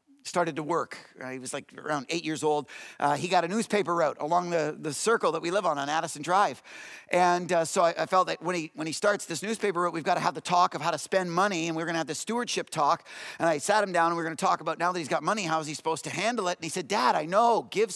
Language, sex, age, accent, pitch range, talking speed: English, male, 50-69, American, 165-210 Hz, 310 wpm